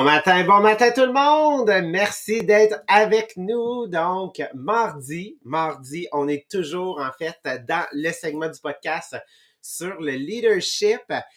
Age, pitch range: 30-49, 145-200 Hz